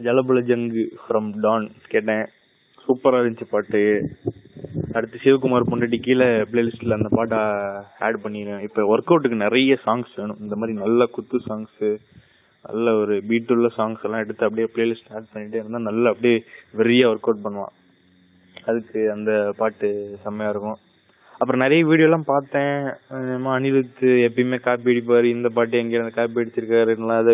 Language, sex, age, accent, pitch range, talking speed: Tamil, male, 20-39, native, 110-130 Hz, 140 wpm